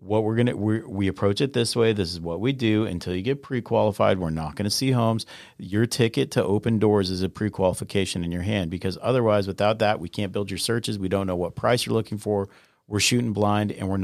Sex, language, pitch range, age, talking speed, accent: male, English, 95-115 Hz, 40-59, 250 wpm, American